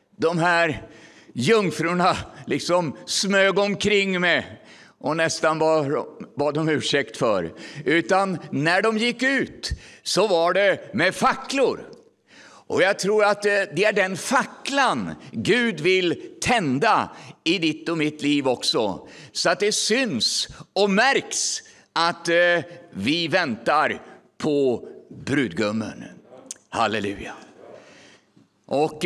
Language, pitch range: English, 155-210 Hz